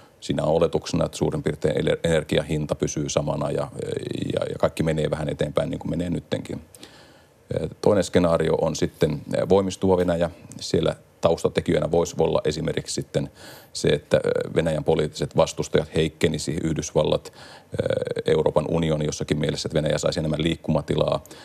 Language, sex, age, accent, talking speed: Finnish, male, 40-59, native, 130 wpm